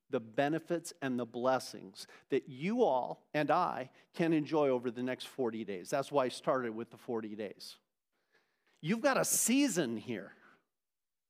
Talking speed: 160 wpm